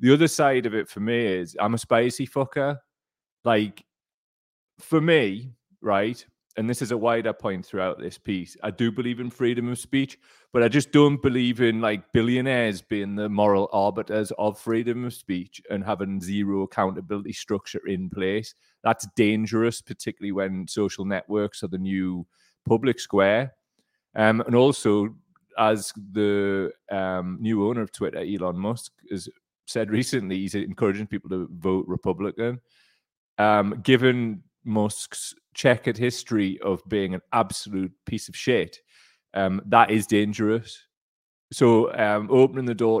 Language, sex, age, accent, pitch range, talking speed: English, male, 30-49, British, 100-125 Hz, 150 wpm